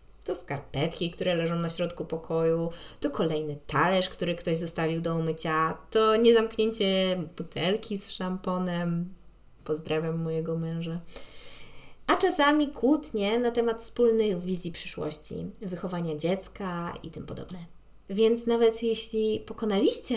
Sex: female